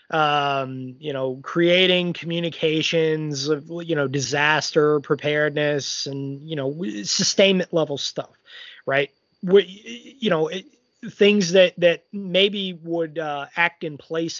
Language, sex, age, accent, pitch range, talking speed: English, male, 30-49, American, 150-190 Hz, 125 wpm